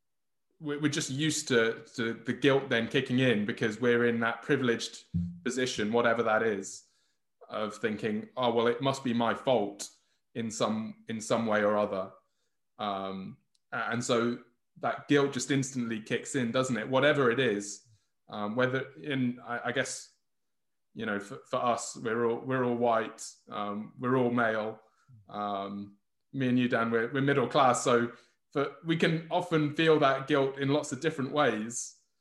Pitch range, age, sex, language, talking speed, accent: 115-140 Hz, 20-39, male, English, 170 wpm, British